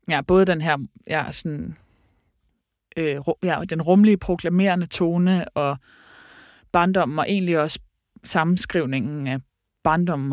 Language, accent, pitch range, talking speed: Danish, native, 145-175 Hz, 115 wpm